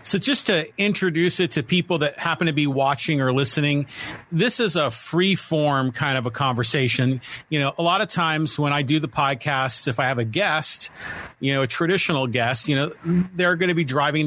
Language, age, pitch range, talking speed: English, 40-59, 135-170 Hz, 215 wpm